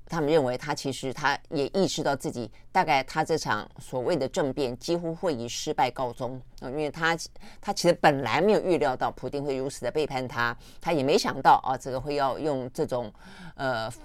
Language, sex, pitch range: Chinese, female, 130-160 Hz